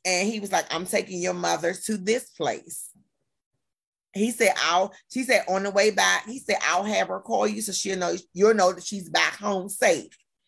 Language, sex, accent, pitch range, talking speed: English, female, American, 175-225 Hz, 210 wpm